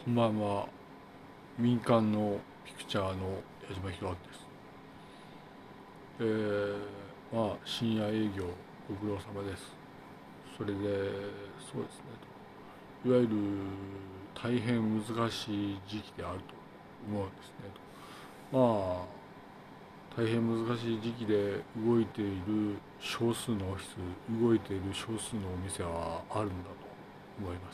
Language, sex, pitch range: Japanese, male, 100-115 Hz